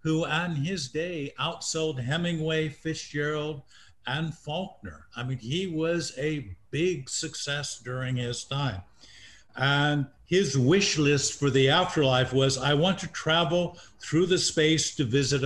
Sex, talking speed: male, 140 wpm